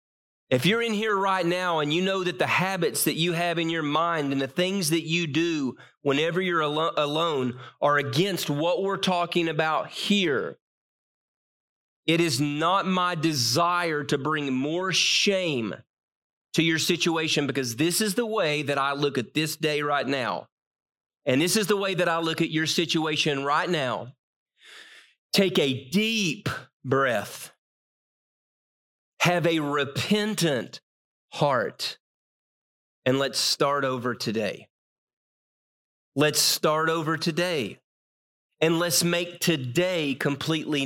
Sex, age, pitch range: male, 30-49, 145-180 Hz